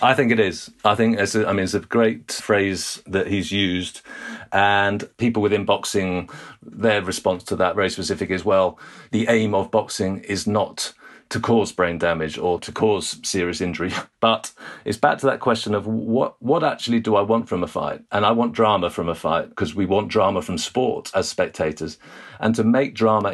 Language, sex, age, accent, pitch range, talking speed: English, male, 40-59, British, 95-110 Hz, 205 wpm